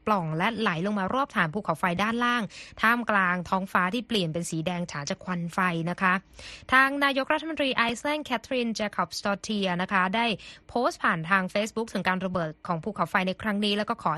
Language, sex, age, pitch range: Thai, female, 20-39, 185-235 Hz